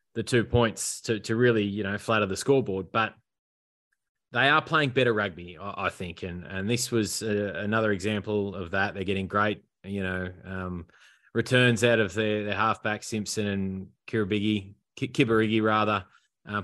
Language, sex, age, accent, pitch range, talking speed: English, male, 20-39, Australian, 100-110 Hz, 165 wpm